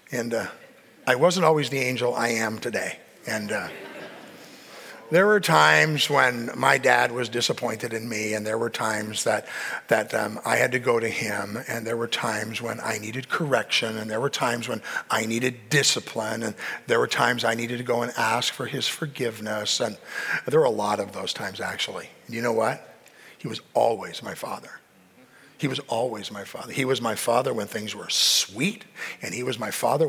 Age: 50-69